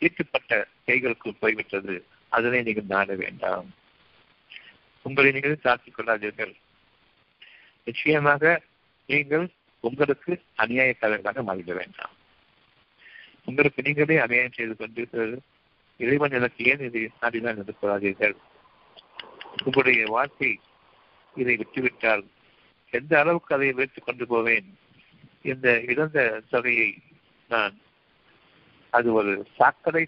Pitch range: 110-140 Hz